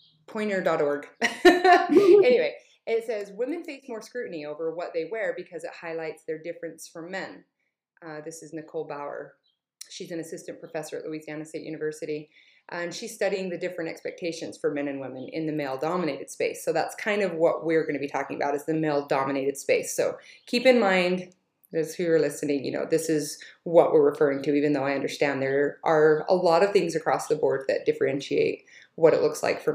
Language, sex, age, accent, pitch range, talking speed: English, female, 30-49, American, 160-225 Hz, 200 wpm